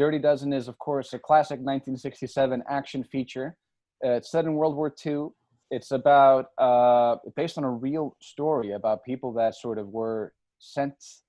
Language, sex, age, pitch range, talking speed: English, male, 20-39, 115-140 Hz, 170 wpm